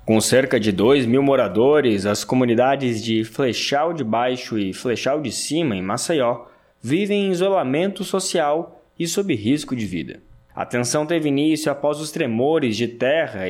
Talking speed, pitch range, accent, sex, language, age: 160 wpm, 120-180 Hz, Brazilian, male, Portuguese, 20-39